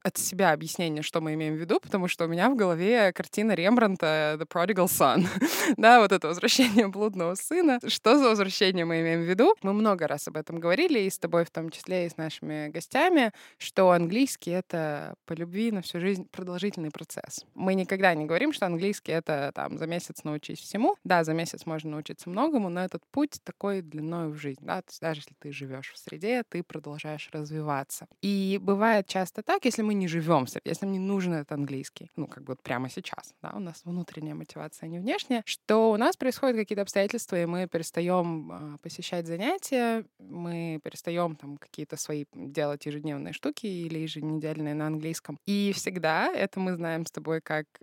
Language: Russian